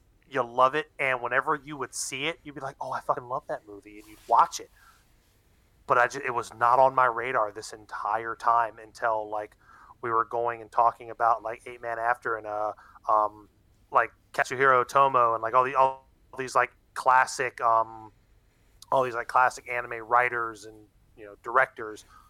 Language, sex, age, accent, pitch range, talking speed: English, male, 30-49, American, 110-135 Hz, 190 wpm